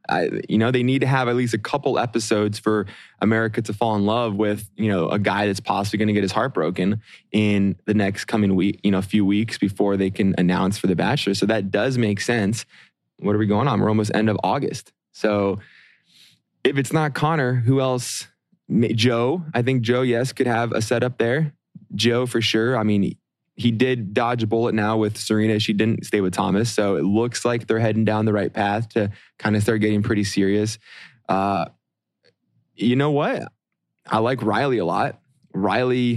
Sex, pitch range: male, 105-125 Hz